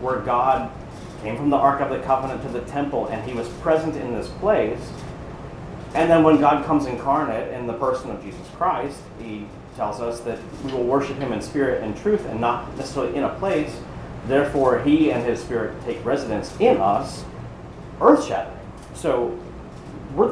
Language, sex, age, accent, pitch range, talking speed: English, male, 40-59, American, 115-145 Hz, 185 wpm